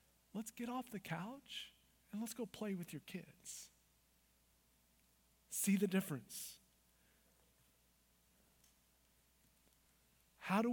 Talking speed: 95 wpm